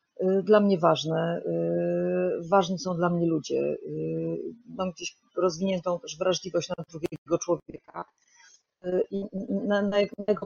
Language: Polish